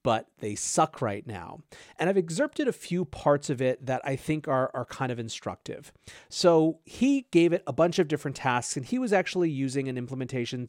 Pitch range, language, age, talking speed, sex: 125-160 Hz, English, 30-49, 210 wpm, male